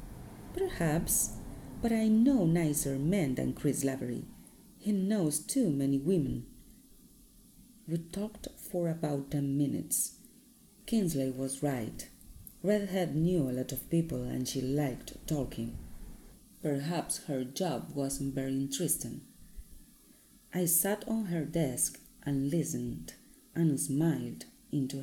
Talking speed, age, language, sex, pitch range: 115 wpm, 30-49, Spanish, female, 130-190 Hz